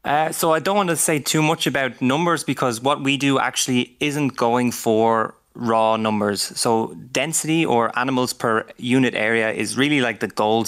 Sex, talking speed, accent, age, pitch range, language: male, 185 wpm, Irish, 20-39, 110-135 Hz, English